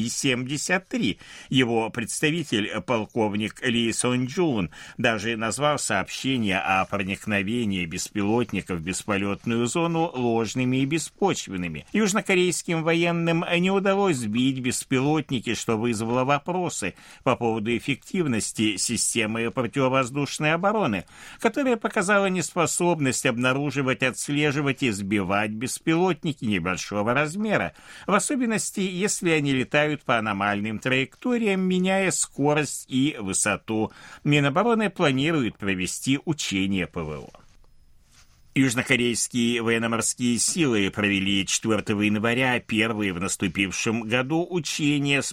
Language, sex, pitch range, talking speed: Russian, male, 105-155 Hz, 95 wpm